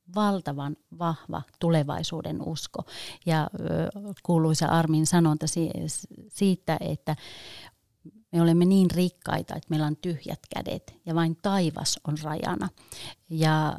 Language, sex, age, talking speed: Finnish, female, 30-49, 110 wpm